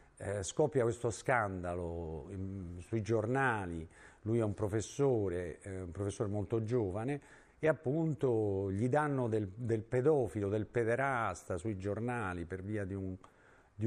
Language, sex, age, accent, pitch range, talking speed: Italian, male, 50-69, native, 100-130 Hz, 125 wpm